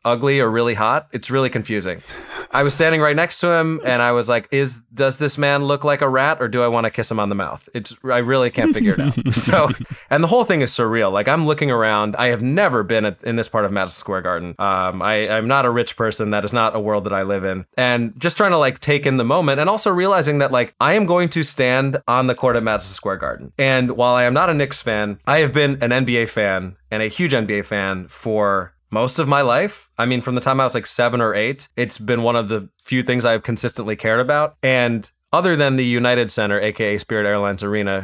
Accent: American